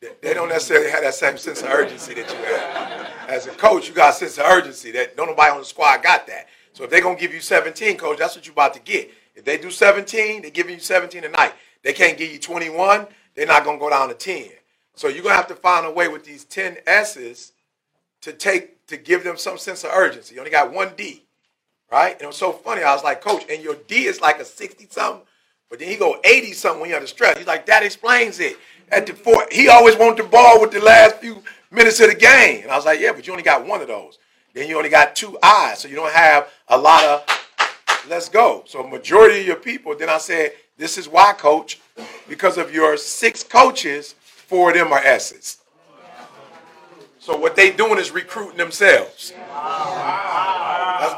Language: English